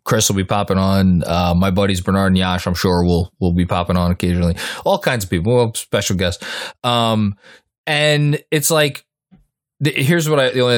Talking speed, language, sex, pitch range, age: 185 wpm, English, male, 100-130 Hz, 20-39